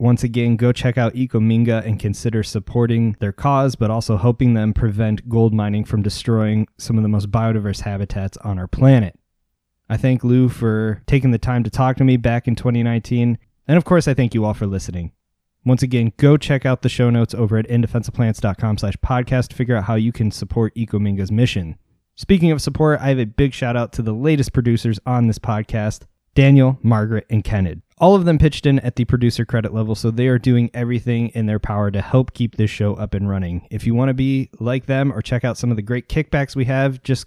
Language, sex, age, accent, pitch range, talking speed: English, male, 20-39, American, 105-125 Hz, 220 wpm